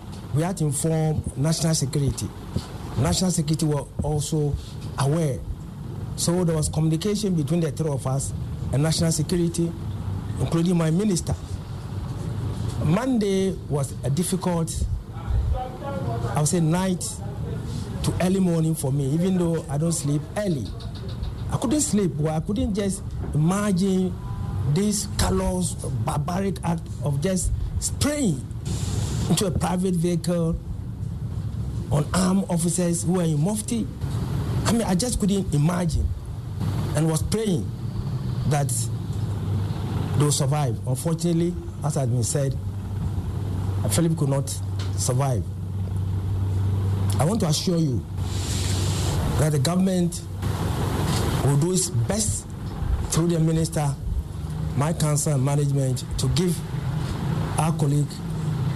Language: English